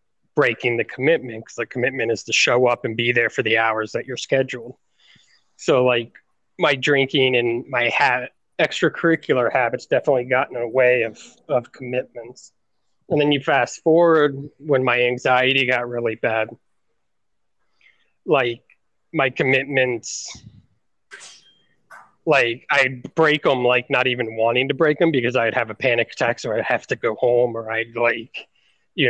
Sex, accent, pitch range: male, American, 115-135 Hz